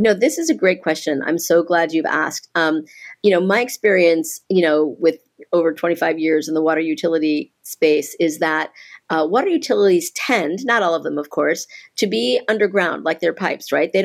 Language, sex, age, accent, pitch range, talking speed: English, female, 40-59, American, 165-205 Hz, 200 wpm